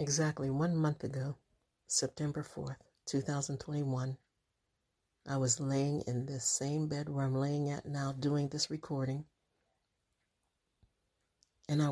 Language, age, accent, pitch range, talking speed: English, 60-79, American, 130-145 Hz, 120 wpm